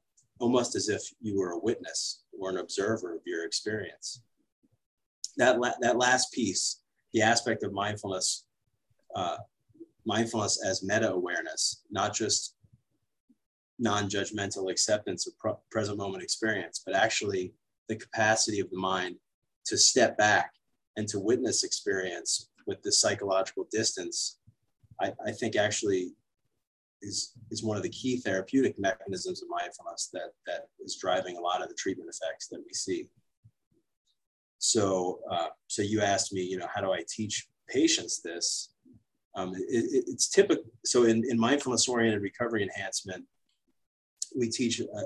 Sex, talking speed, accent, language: male, 145 wpm, American, English